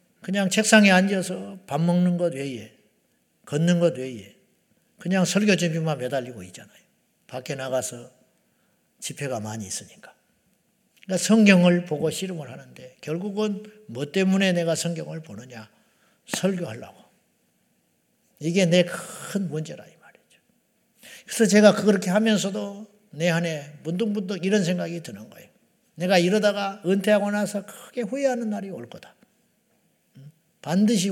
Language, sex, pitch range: Korean, male, 160-205 Hz